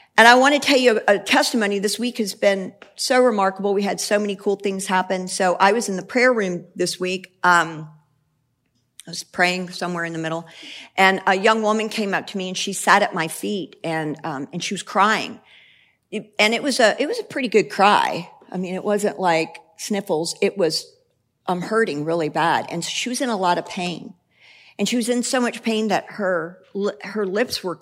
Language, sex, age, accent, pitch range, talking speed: English, female, 50-69, American, 165-210 Hz, 220 wpm